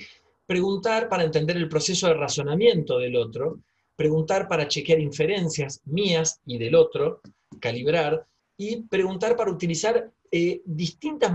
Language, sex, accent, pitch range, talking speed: Spanish, male, Argentinian, 155-185 Hz, 125 wpm